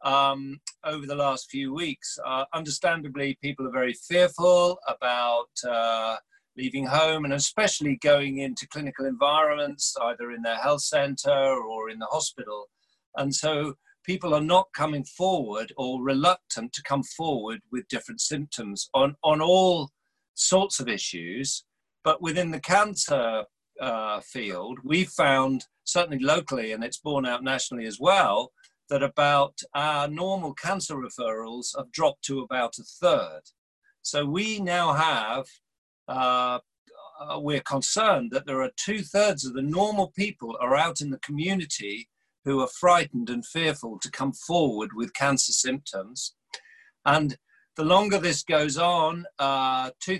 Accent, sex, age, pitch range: British, male, 50-69, 130-175 Hz